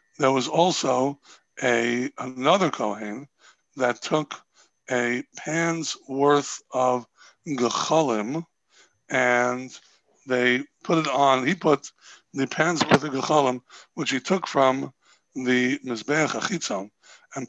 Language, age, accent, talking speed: English, 60-79, American, 110 wpm